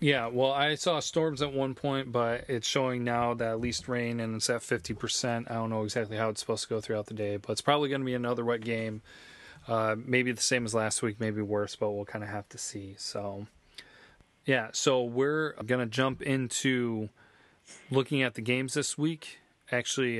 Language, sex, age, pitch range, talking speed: English, male, 30-49, 110-130 Hz, 215 wpm